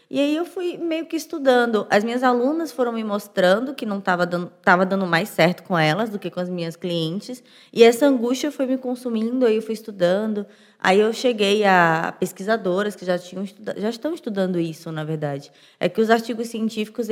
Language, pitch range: Portuguese, 185-225 Hz